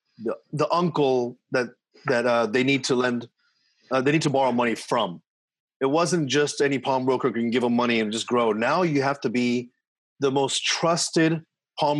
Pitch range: 125-150 Hz